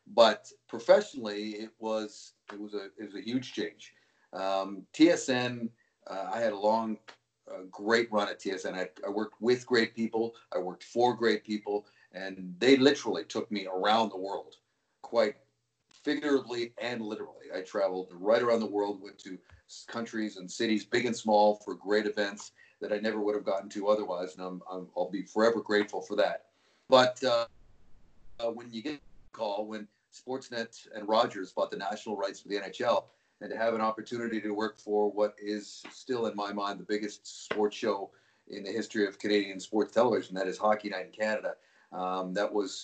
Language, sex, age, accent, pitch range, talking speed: English, male, 40-59, American, 100-115 Hz, 185 wpm